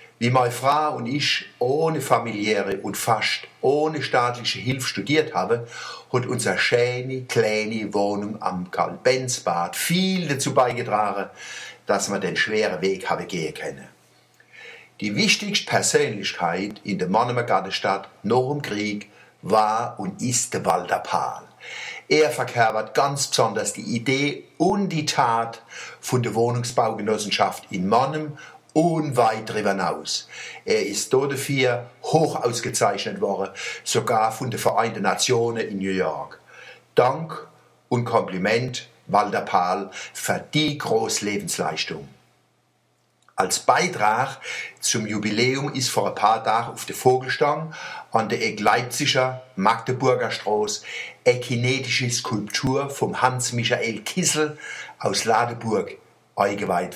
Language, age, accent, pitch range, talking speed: German, 60-79, German, 115-145 Hz, 120 wpm